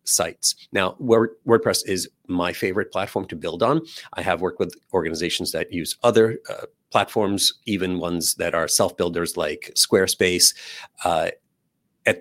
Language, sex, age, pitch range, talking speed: English, male, 40-59, 90-115 Hz, 150 wpm